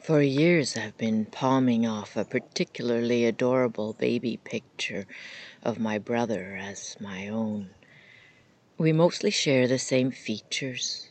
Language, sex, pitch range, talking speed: English, female, 105-125 Hz, 125 wpm